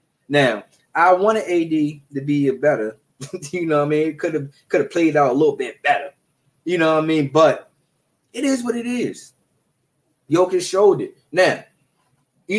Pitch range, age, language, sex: 145-170 Hz, 20-39, English, male